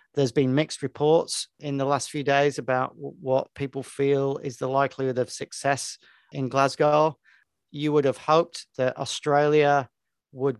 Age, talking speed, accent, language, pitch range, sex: 40-59, 155 wpm, British, English, 115-140 Hz, male